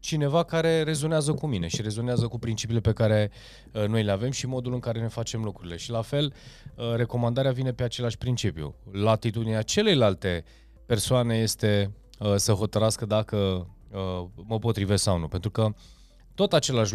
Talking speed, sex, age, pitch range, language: 170 wpm, male, 20-39, 105-140 Hz, Romanian